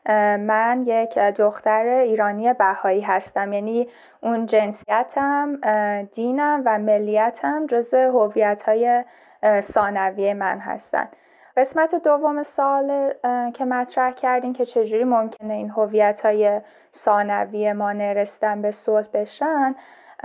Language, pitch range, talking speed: Persian, 210-260 Hz, 105 wpm